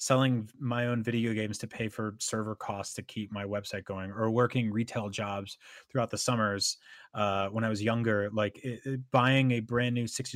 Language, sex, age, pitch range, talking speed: English, male, 30-49, 105-130 Hz, 205 wpm